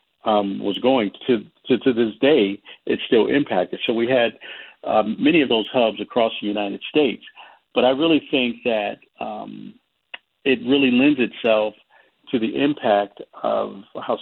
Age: 50-69